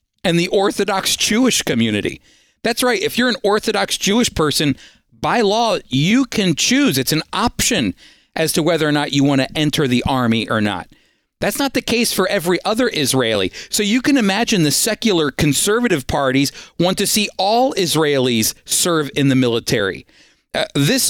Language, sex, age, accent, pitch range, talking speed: English, male, 50-69, American, 145-200 Hz, 175 wpm